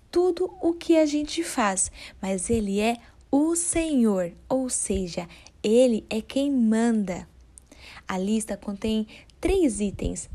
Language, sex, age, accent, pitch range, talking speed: Portuguese, female, 10-29, Brazilian, 205-275 Hz, 130 wpm